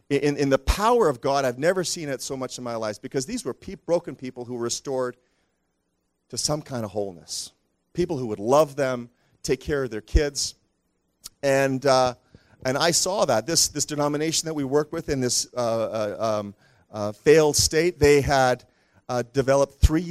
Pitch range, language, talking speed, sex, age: 120-160 Hz, English, 190 wpm, male, 40-59